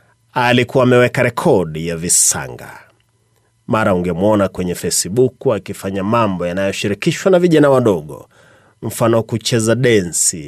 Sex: male